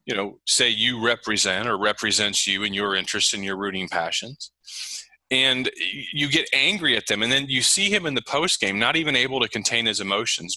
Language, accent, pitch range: English, American, 105-130 Hz